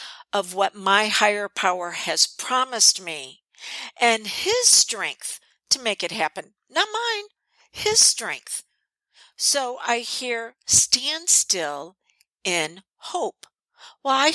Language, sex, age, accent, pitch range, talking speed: English, female, 50-69, American, 180-235 Hz, 115 wpm